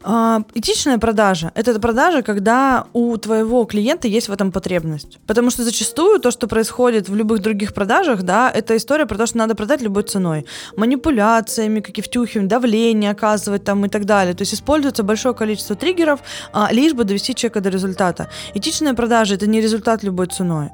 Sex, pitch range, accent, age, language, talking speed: female, 205-245 Hz, native, 20-39, Russian, 180 wpm